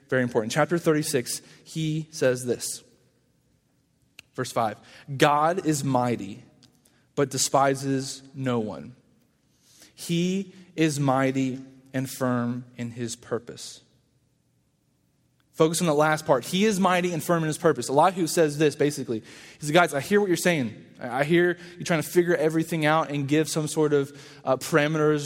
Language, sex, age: English, male, 20-39